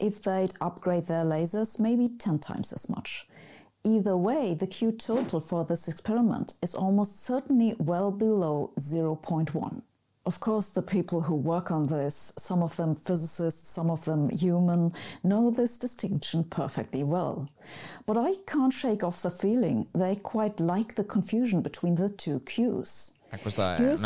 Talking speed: 155 wpm